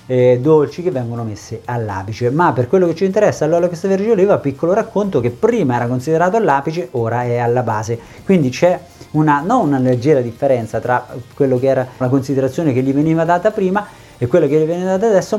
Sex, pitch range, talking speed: male, 130-185 Hz, 205 wpm